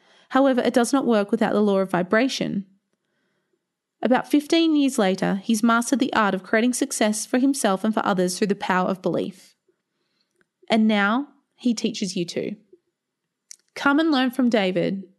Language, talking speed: English, 165 wpm